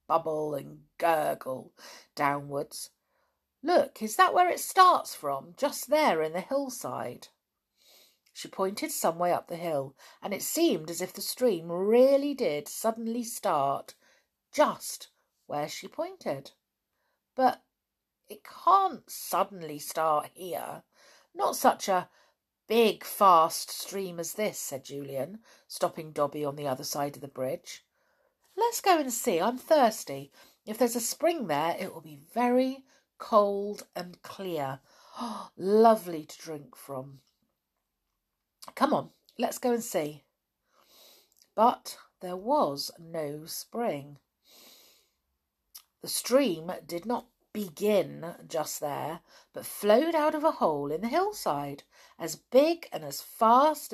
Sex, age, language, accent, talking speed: female, 50-69, English, British, 130 wpm